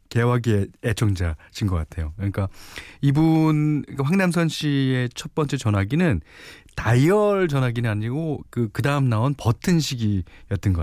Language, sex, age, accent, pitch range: Korean, male, 40-59, native, 95-140 Hz